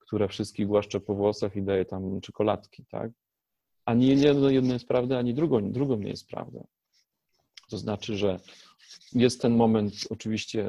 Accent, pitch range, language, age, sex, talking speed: native, 105-130 Hz, Polish, 40-59, male, 150 wpm